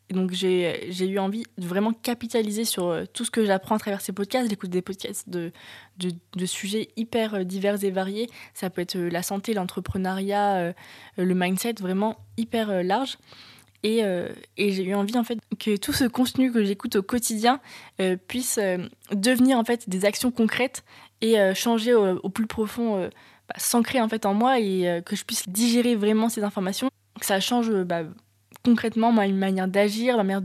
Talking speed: 180 wpm